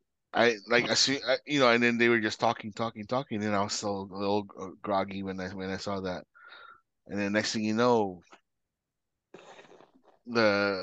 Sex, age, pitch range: male, 30-49, 105-130 Hz